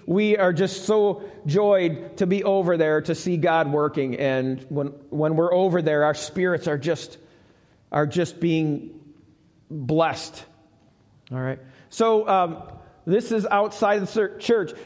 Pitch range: 155-210 Hz